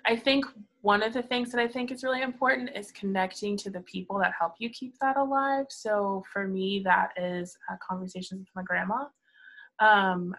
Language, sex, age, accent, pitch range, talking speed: English, female, 20-39, American, 185-225 Hz, 195 wpm